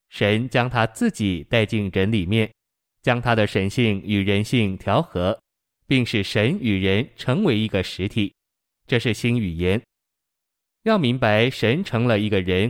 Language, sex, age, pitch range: Chinese, male, 20-39, 100-120 Hz